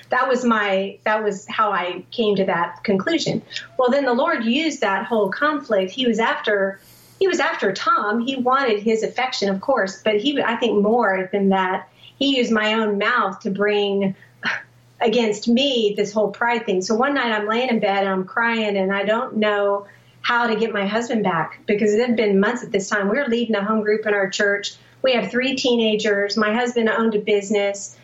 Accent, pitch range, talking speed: American, 195-235 Hz, 210 wpm